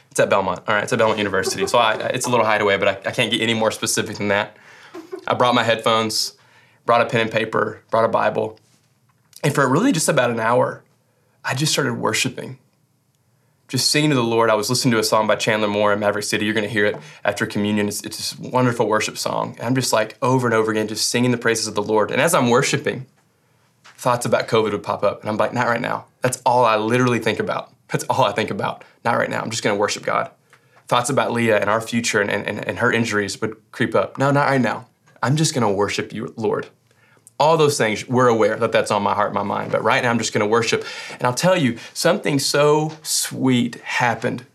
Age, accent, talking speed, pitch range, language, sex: 20-39, American, 240 wpm, 110-135 Hz, English, male